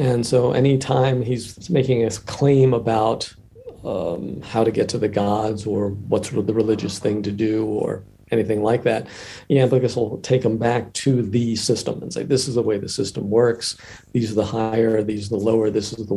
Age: 50-69